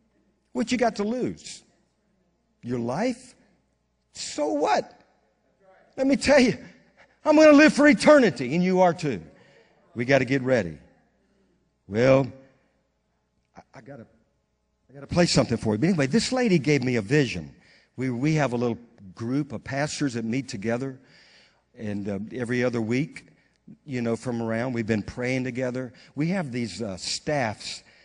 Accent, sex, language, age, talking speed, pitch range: American, male, English, 50-69, 160 wpm, 120-165 Hz